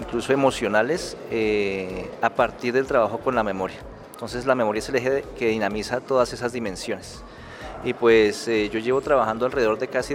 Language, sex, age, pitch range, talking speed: Spanish, male, 30-49, 110-135 Hz, 175 wpm